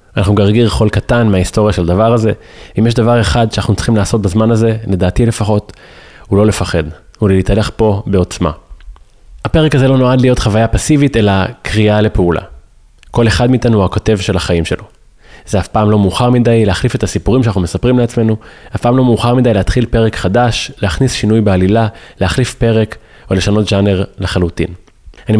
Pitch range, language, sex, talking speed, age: 95-120 Hz, Hebrew, male, 175 wpm, 20-39